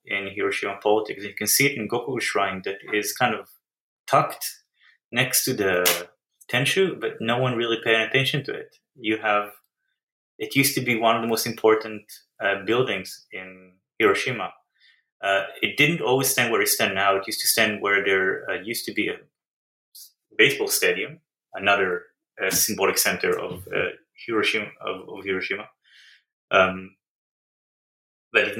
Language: English